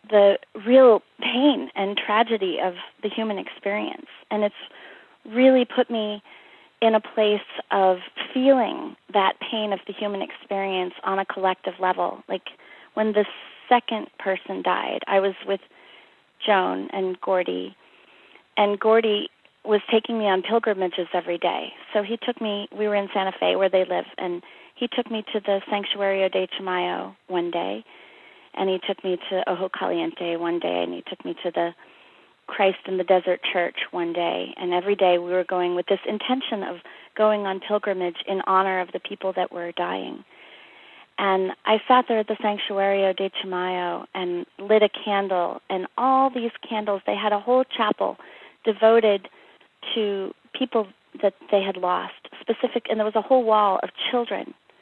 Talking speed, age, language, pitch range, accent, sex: 170 wpm, 30-49, English, 185-220 Hz, American, female